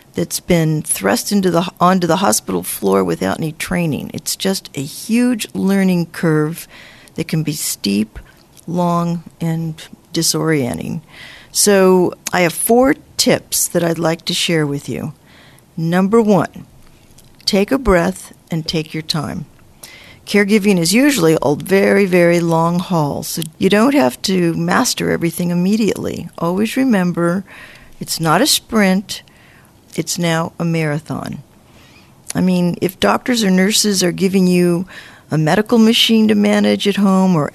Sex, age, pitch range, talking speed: female, 50-69, 160-195 Hz, 140 wpm